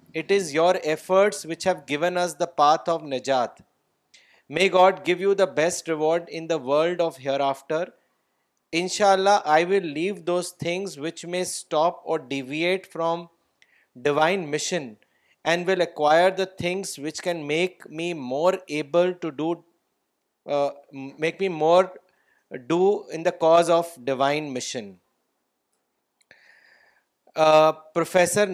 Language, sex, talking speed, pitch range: Urdu, male, 130 wpm, 150-180 Hz